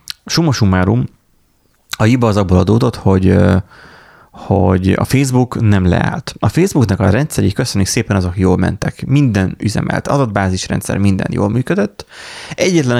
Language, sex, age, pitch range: Hungarian, male, 30-49, 95-115 Hz